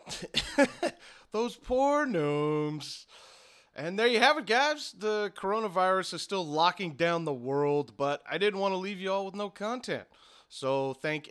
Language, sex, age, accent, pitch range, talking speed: English, male, 30-49, American, 135-180 Hz, 160 wpm